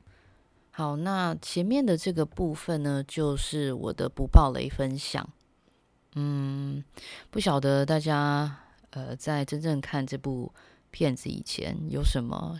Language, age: Chinese, 20-39